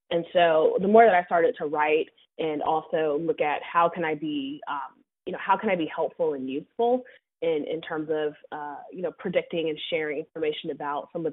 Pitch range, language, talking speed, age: 155-220 Hz, English, 215 wpm, 20-39